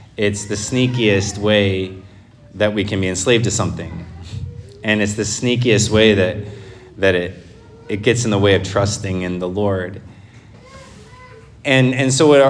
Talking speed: 160 wpm